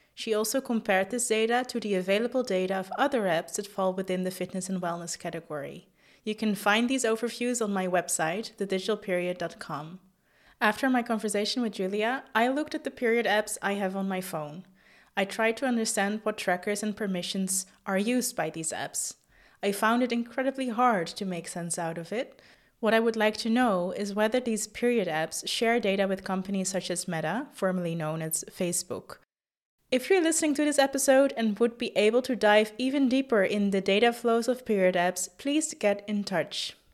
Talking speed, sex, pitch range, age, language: 190 wpm, female, 190-240 Hz, 20-39, English